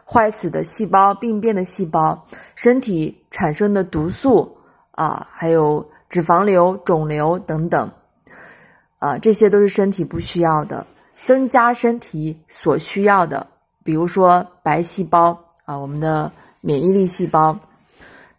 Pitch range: 170-215 Hz